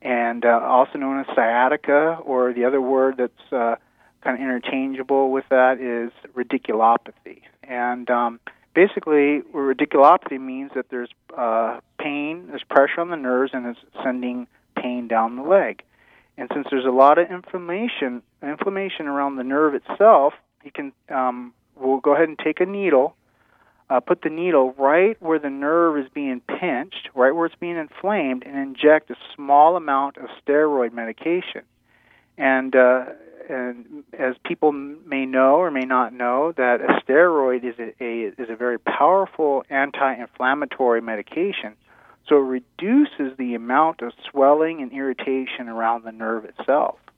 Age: 30-49